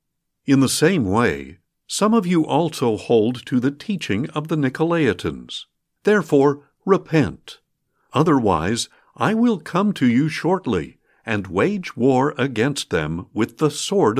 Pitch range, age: 115-165 Hz, 60-79